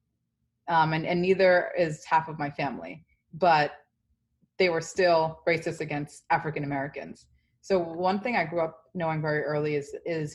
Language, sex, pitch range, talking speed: English, female, 150-180 Hz, 155 wpm